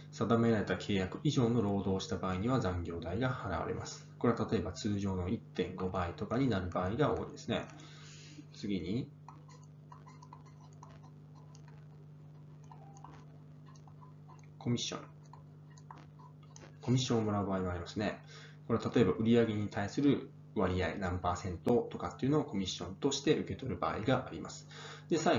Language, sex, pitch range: Japanese, male, 95-150 Hz